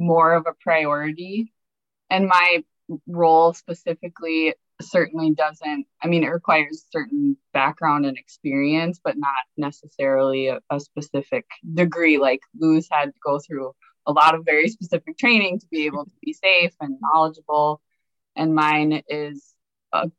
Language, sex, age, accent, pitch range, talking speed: English, female, 20-39, American, 145-175 Hz, 145 wpm